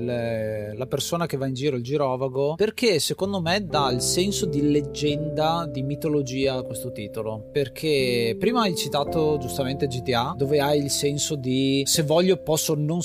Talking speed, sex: 165 wpm, male